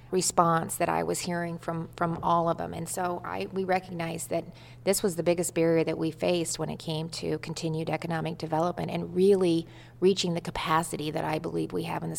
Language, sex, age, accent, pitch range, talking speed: English, female, 40-59, American, 165-185 Hz, 210 wpm